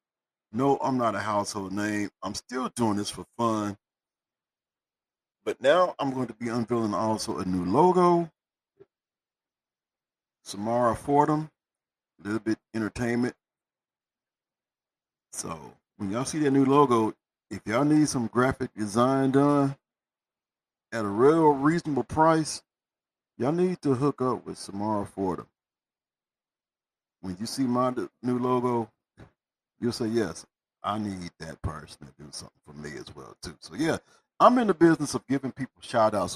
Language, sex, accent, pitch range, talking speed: English, male, American, 105-145 Hz, 145 wpm